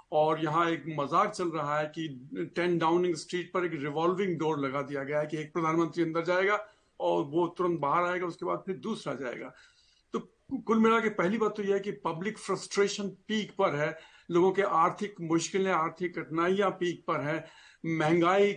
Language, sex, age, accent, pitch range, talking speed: Hindi, male, 50-69, native, 160-200 Hz, 185 wpm